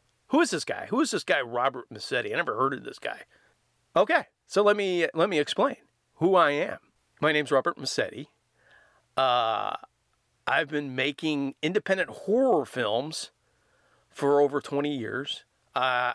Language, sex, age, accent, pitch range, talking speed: English, male, 40-59, American, 120-150 Hz, 155 wpm